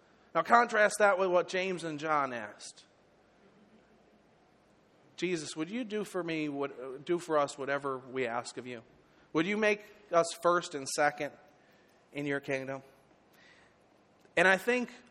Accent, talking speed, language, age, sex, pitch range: American, 145 wpm, English, 40-59, male, 140-175 Hz